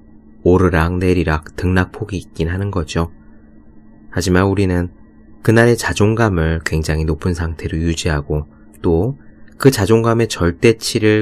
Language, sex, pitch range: Korean, male, 80-110 Hz